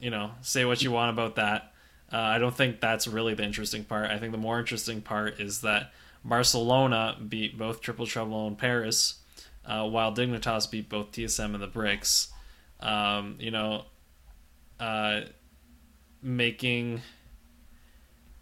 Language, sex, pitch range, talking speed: English, male, 100-115 Hz, 155 wpm